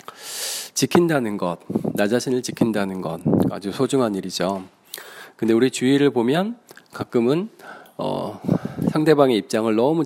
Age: 40-59